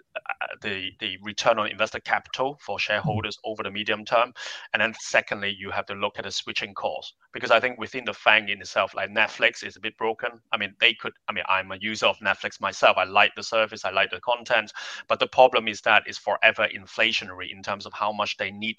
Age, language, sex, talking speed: 20-39, English, male, 230 wpm